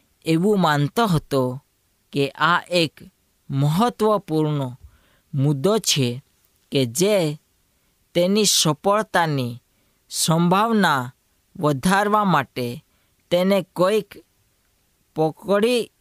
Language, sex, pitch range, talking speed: Hindi, female, 130-190 Hz, 55 wpm